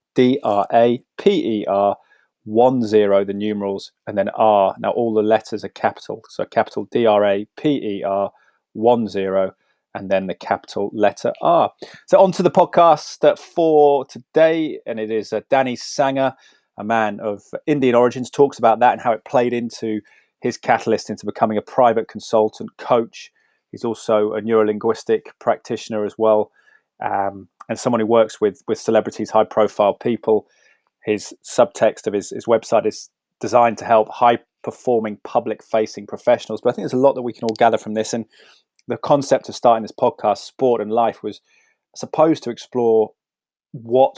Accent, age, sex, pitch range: British, 30-49, male, 105-120 Hz